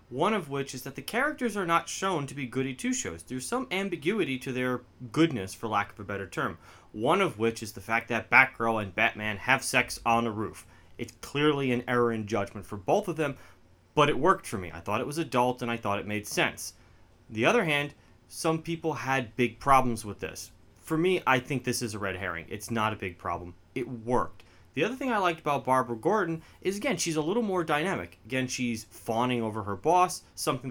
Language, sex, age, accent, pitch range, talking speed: English, male, 30-49, American, 105-150 Hz, 225 wpm